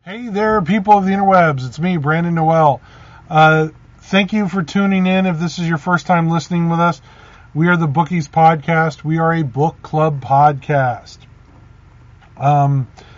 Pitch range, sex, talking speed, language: 145-175 Hz, male, 170 wpm, English